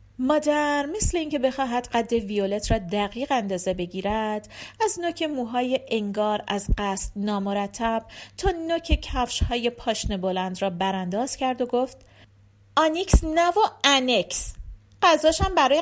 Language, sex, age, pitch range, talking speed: Persian, female, 40-59, 185-270 Hz, 130 wpm